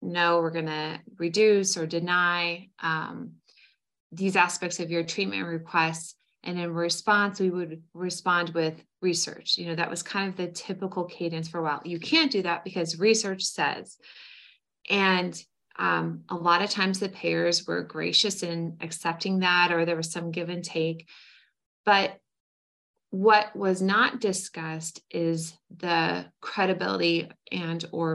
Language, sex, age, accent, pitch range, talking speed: English, female, 20-39, American, 160-185 Hz, 150 wpm